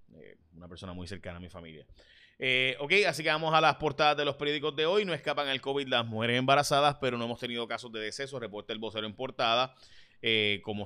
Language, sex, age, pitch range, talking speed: Spanish, male, 30-49, 105-130 Hz, 225 wpm